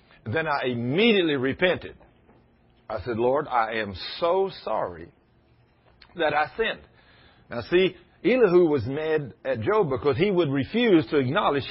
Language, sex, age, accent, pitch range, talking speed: English, male, 50-69, American, 120-180 Hz, 140 wpm